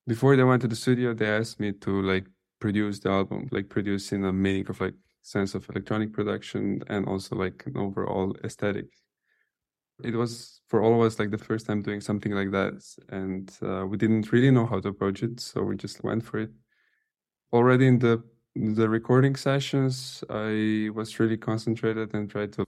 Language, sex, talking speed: English, male, 195 wpm